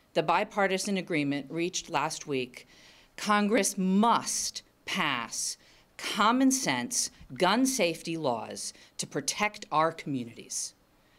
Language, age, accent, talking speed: English, 50-69, American, 90 wpm